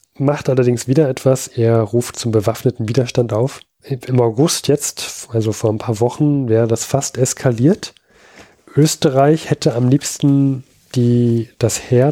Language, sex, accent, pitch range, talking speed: German, male, German, 110-130 Hz, 145 wpm